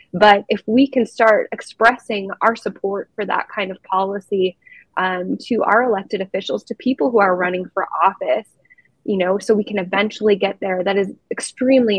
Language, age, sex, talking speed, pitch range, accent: English, 20-39, female, 180 wpm, 195-225 Hz, American